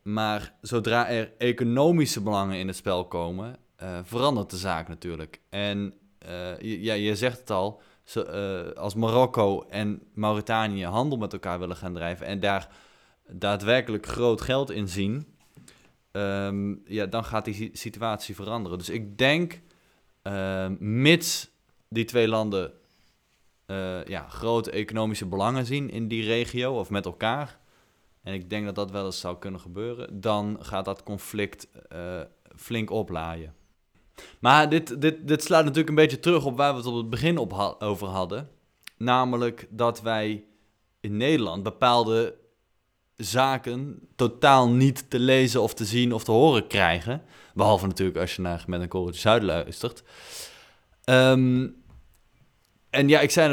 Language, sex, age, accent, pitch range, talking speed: Dutch, male, 20-39, Dutch, 95-125 Hz, 155 wpm